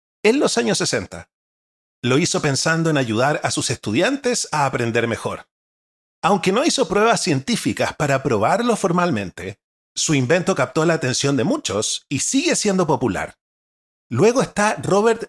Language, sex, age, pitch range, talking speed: Spanish, male, 40-59, 125-190 Hz, 145 wpm